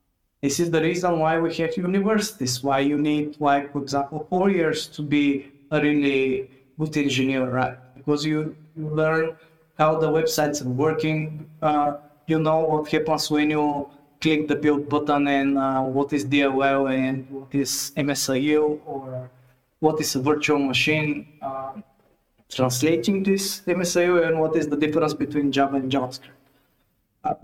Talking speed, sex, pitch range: 150 wpm, male, 140-160 Hz